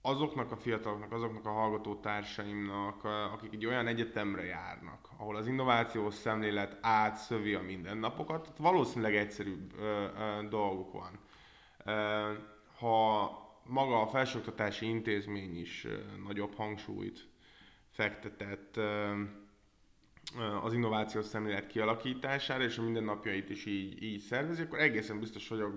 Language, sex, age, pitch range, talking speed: Hungarian, male, 20-39, 105-120 Hz, 110 wpm